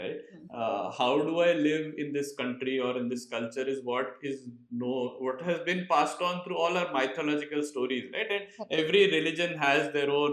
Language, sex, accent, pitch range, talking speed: English, male, Indian, 135-200 Hz, 200 wpm